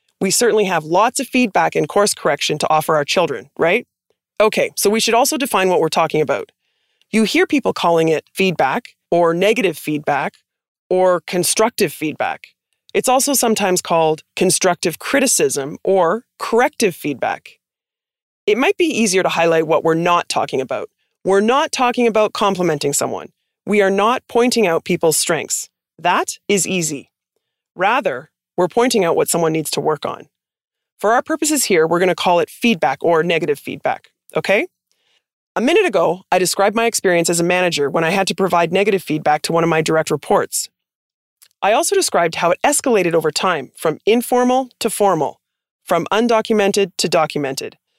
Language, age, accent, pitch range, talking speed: English, 20-39, American, 165-230 Hz, 170 wpm